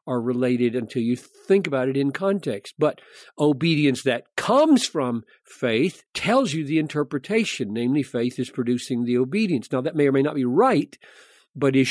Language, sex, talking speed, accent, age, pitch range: English, male, 175 wpm, American, 50-69, 130-190 Hz